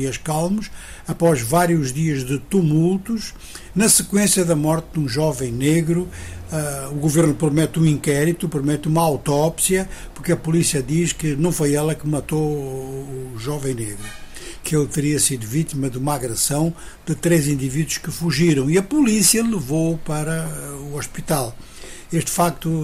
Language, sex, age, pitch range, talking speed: Portuguese, male, 60-79, 140-170 Hz, 150 wpm